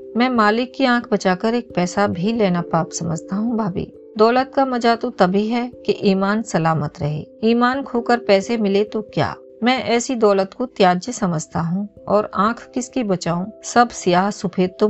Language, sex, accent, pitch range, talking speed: Hindi, female, native, 185-235 Hz, 175 wpm